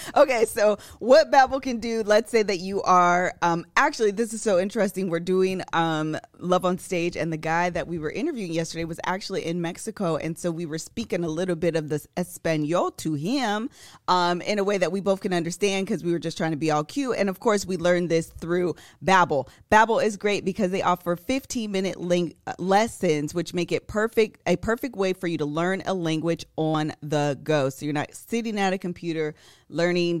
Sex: female